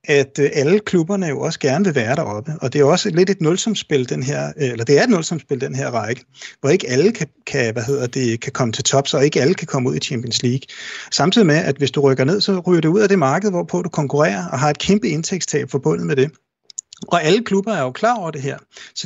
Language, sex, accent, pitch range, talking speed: Danish, male, native, 135-175 Hz, 260 wpm